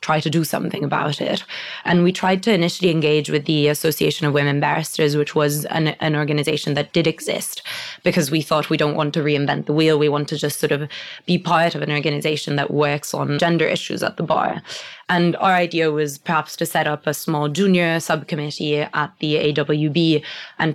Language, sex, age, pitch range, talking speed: English, female, 20-39, 150-165 Hz, 205 wpm